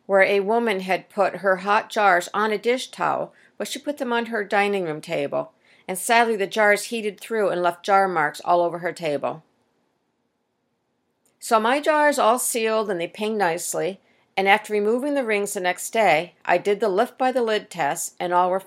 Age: 50-69